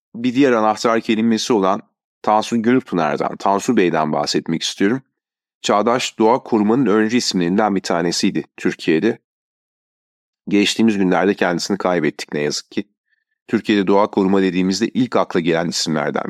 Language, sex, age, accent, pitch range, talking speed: Turkish, male, 40-59, native, 90-115 Hz, 125 wpm